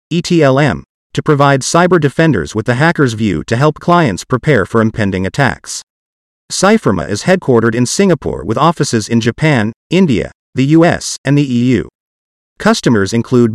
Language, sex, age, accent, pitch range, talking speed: English, male, 40-59, American, 115-160 Hz, 145 wpm